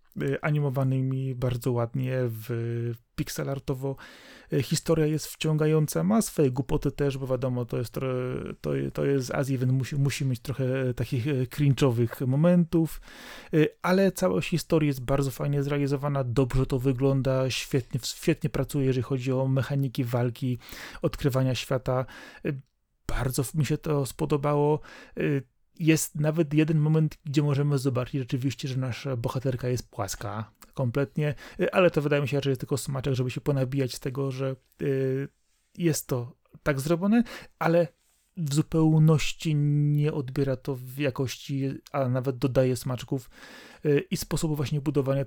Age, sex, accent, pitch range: 30-49, male, native, 130-150 Hz